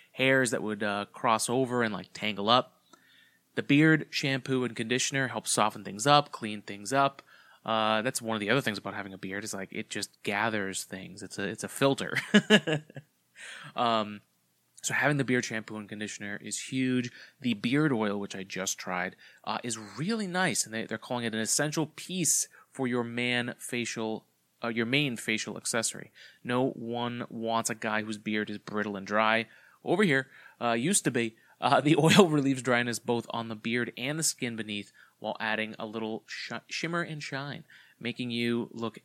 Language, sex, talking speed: English, male, 185 wpm